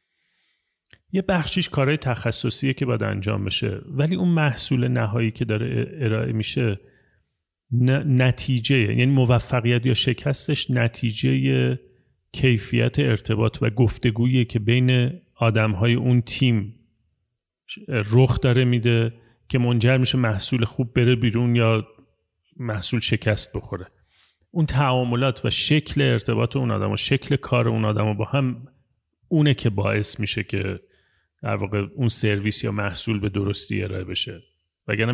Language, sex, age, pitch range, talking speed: Persian, male, 40-59, 110-135 Hz, 130 wpm